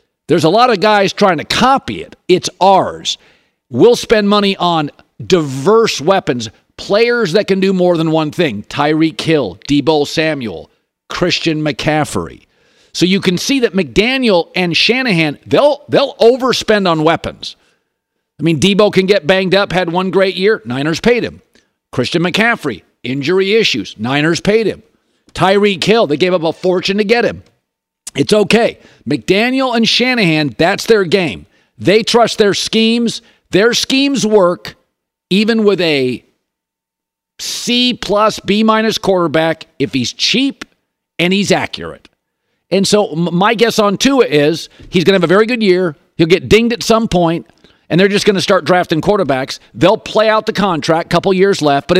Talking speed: 165 wpm